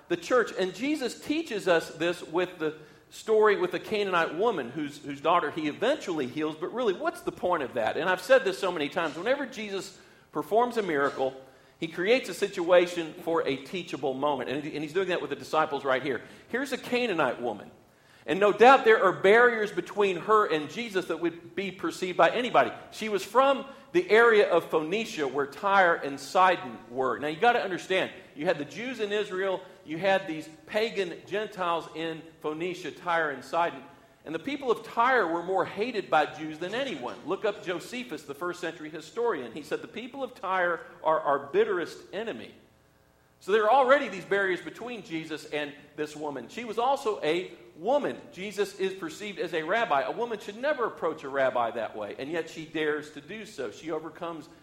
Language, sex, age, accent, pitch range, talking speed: English, male, 40-59, American, 155-215 Hz, 195 wpm